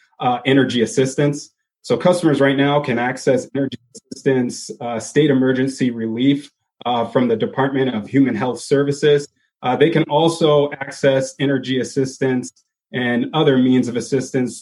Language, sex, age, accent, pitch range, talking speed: English, male, 30-49, American, 125-145 Hz, 145 wpm